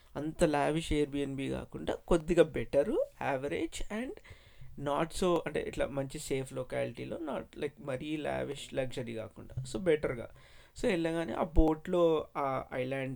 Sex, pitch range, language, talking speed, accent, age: male, 140-170 Hz, Telugu, 130 wpm, native, 20-39